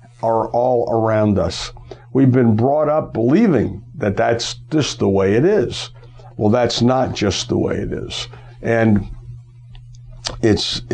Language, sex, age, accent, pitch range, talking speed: English, male, 60-79, American, 120-145 Hz, 145 wpm